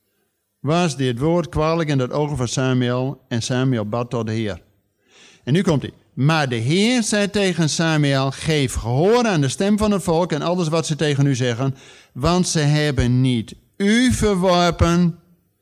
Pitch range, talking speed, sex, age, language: 120-180 Hz, 175 wpm, male, 50-69, Dutch